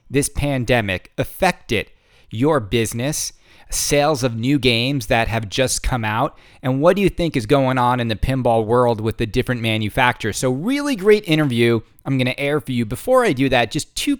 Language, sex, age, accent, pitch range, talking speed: English, male, 30-49, American, 120-155 Hz, 190 wpm